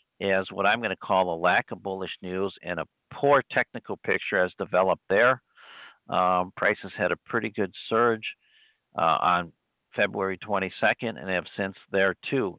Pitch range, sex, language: 90-105 Hz, male, English